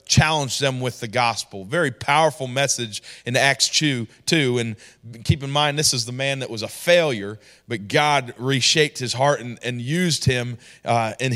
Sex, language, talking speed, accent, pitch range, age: male, English, 185 wpm, American, 120-195 Hz, 40-59